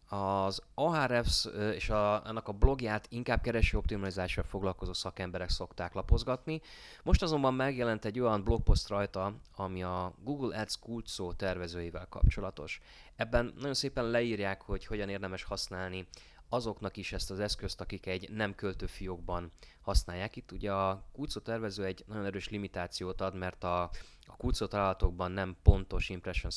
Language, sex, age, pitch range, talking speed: Hungarian, male, 20-39, 90-110 Hz, 140 wpm